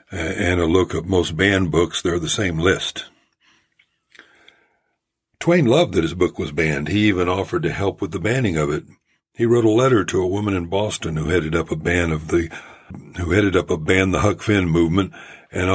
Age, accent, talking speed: 60-79, American, 205 wpm